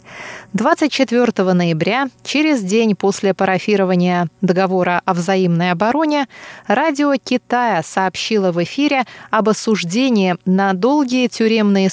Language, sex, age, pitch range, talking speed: Russian, female, 20-39, 185-245 Hz, 100 wpm